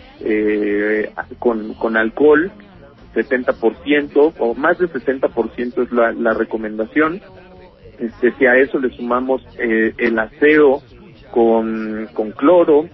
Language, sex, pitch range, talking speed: Spanish, male, 115-135 Hz, 115 wpm